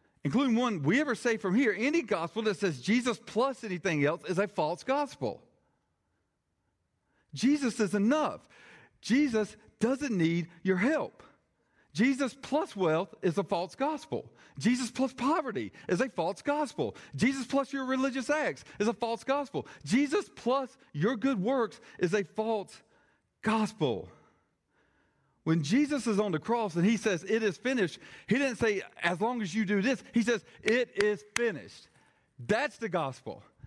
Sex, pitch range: male, 150-240 Hz